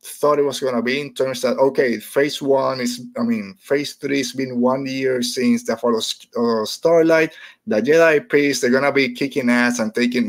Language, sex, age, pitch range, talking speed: English, male, 30-49, 120-140 Hz, 215 wpm